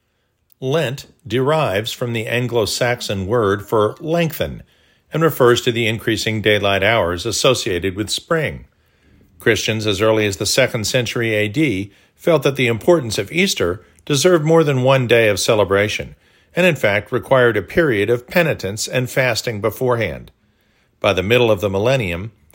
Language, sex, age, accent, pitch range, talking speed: English, male, 50-69, American, 105-135 Hz, 150 wpm